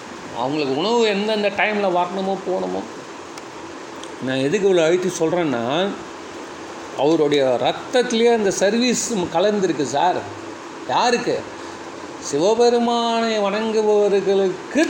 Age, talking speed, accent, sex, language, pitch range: 40-59, 80 wpm, native, male, Tamil, 175-230 Hz